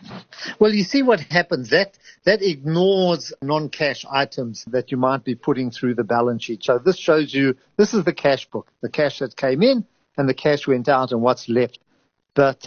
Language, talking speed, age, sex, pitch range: English, 200 wpm, 50-69, male, 130-170 Hz